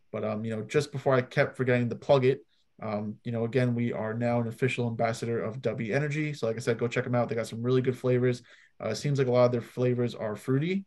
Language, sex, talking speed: English, male, 275 wpm